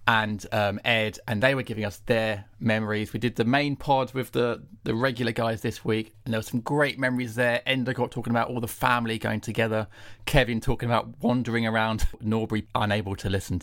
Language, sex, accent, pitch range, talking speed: English, male, British, 110-130 Hz, 205 wpm